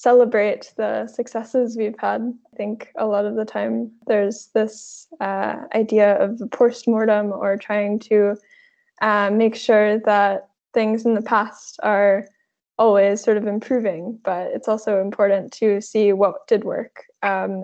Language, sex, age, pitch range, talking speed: English, female, 10-29, 200-225 Hz, 150 wpm